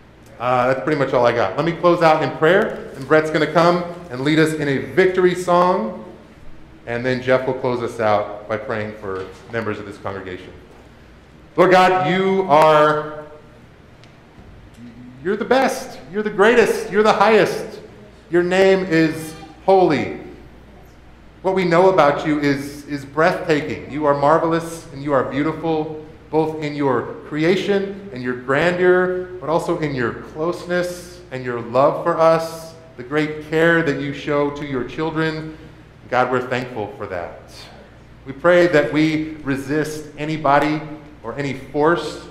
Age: 40-59